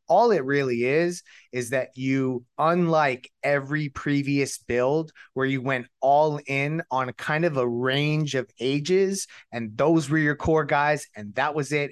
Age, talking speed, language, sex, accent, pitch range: 30-49, 165 wpm, English, male, American, 125-145 Hz